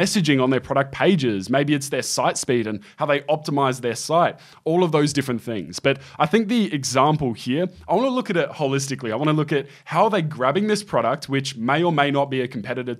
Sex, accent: male, Australian